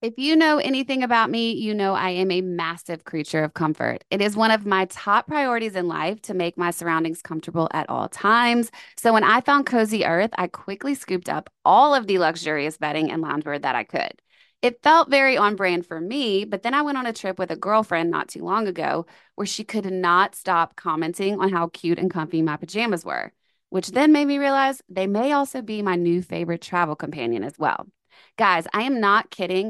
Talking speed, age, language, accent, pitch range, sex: 220 wpm, 20-39, English, American, 175-235 Hz, female